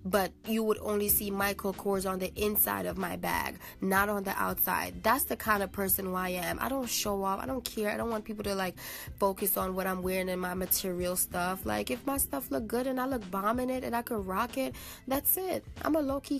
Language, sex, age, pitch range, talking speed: English, female, 20-39, 185-215 Hz, 255 wpm